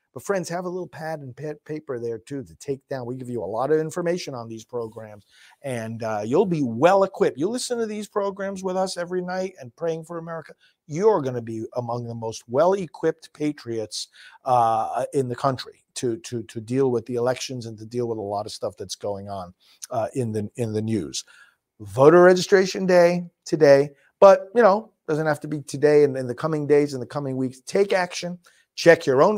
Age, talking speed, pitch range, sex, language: 50-69, 215 wpm, 125-180 Hz, male, English